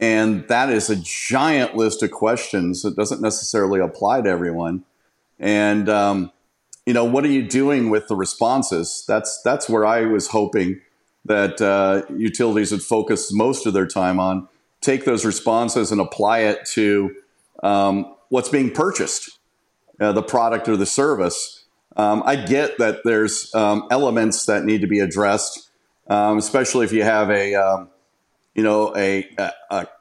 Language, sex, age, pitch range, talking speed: English, male, 40-59, 100-115 Hz, 160 wpm